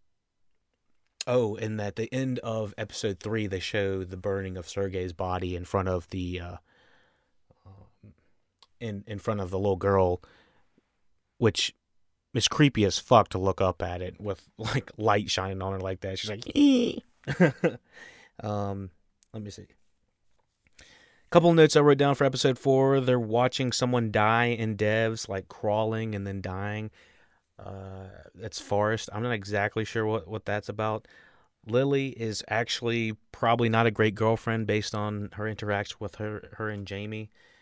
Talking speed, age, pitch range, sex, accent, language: 155 wpm, 30-49, 95-115 Hz, male, American, English